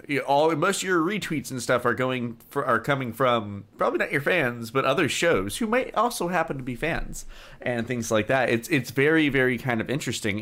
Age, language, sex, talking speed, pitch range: 30-49, English, male, 230 wpm, 100-125 Hz